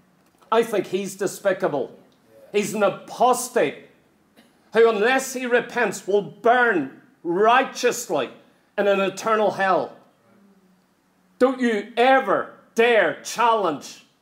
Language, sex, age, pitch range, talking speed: English, male, 40-59, 215-255 Hz, 95 wpm